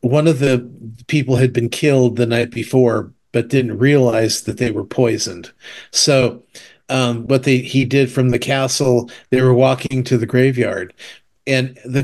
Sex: male